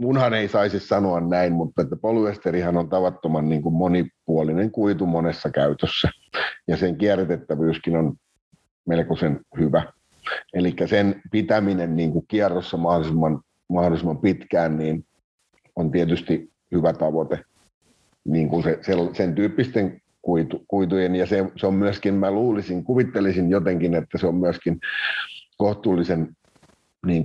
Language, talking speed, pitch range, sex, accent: Finnish, 125 wpm, 85-105 Hz, male, native